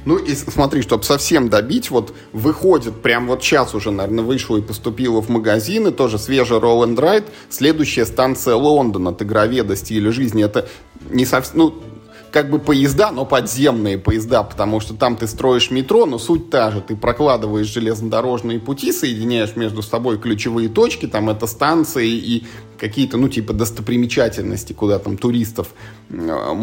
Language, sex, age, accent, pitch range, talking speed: Russian, male, 20-39, native, 110-135 Hz, 155 wpm